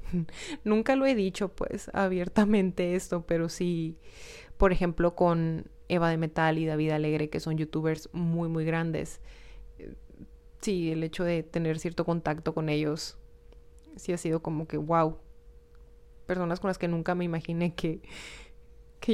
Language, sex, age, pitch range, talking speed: Spanish, female, 20-39, 155-180 Hz, 150 wpm